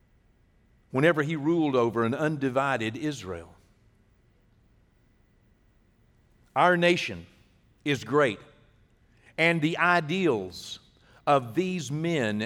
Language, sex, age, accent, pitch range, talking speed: English, male, 60-79, American, 115-155 Hz, 80 wpm